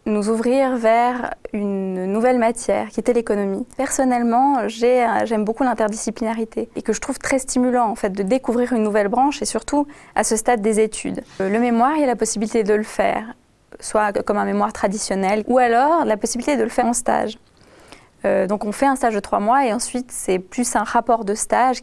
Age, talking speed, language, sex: 20-39, 205 wpm, French, female